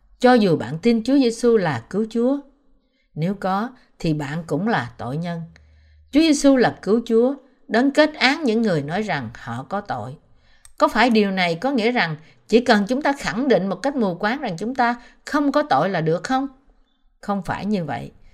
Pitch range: 170-245 Hz